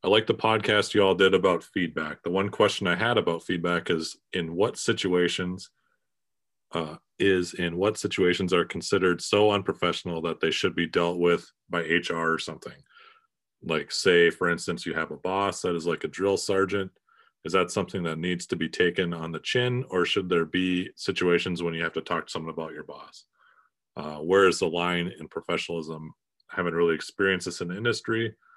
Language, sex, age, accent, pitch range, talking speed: English, male, 30-49, American, 80-95 Hz, 195 wpm